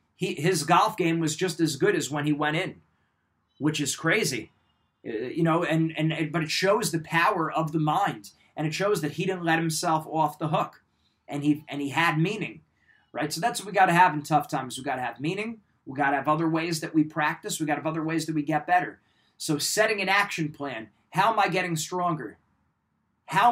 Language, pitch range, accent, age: English, 150-185 Hz, American, 30-49